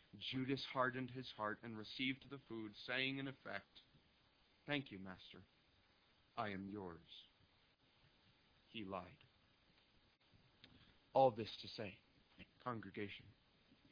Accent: American